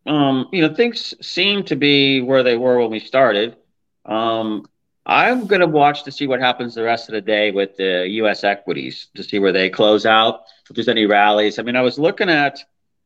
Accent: American